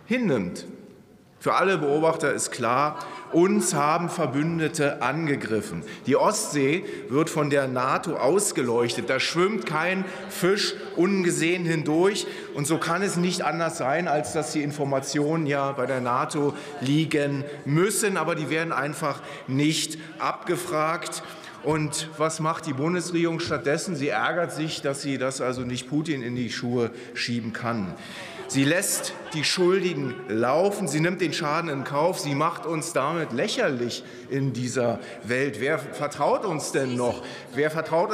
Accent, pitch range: German, 135-170 Hz